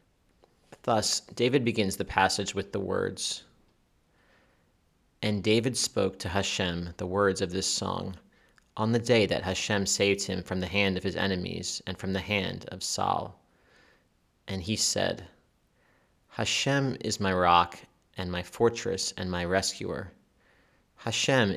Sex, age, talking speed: male, 30-49, 140 wpm